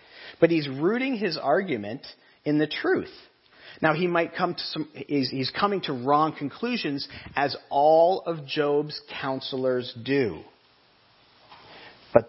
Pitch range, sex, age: 115-160 Hz, male, 40-59